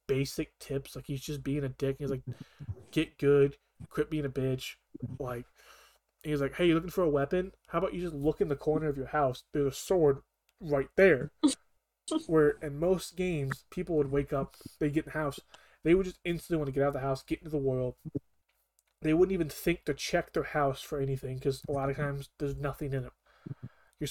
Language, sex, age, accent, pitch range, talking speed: English, male, 20-39, American, 135-155 Hz, 220 wpm